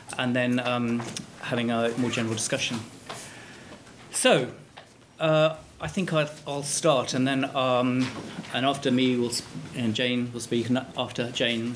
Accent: British